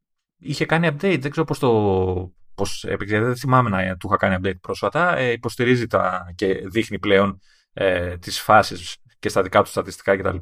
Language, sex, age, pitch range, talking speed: Greek, male, 30-49, 95-125 Hz, 175 wpm